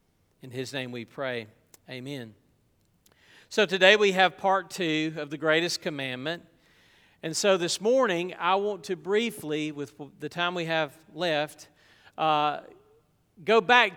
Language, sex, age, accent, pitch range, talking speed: English, male, 40-59, American, 145-190 Hz, 140 wpm